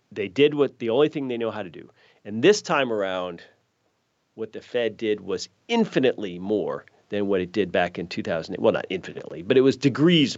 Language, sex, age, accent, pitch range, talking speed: English, male, 40-59, American, 100-140 Hz, 210 wpm